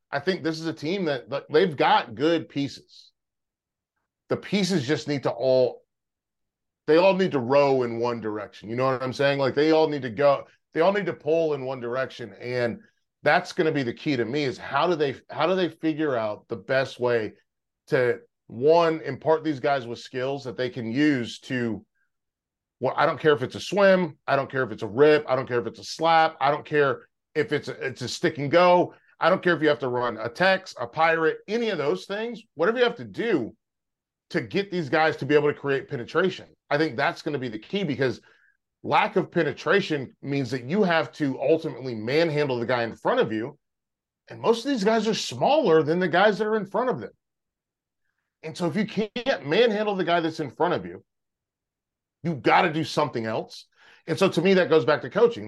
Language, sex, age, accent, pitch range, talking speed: English, male, 30-49, American, 130-175 Hz, 230 wpm